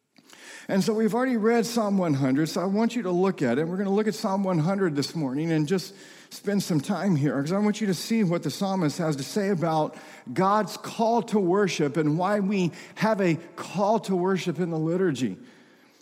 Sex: male